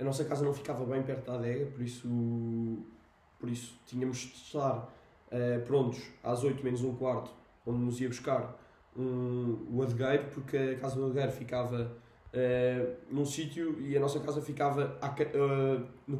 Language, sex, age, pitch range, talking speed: Portuguese, male, 20-39, 120-145 Hz, 170 wpm